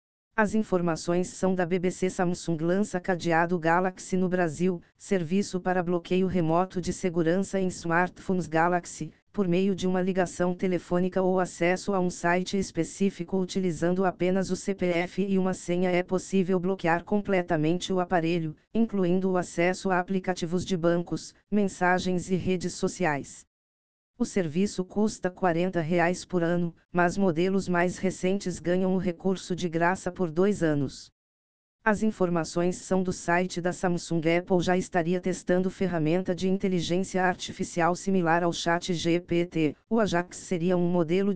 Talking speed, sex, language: 140 wpm, female, Portuguese